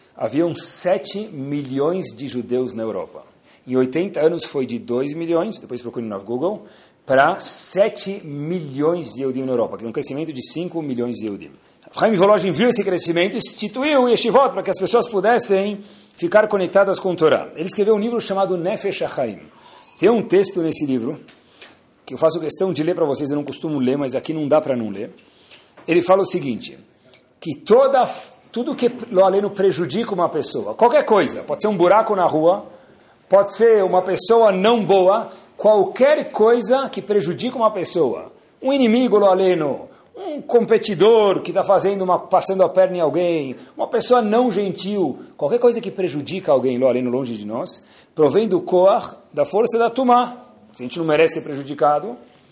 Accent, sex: Brazilian, male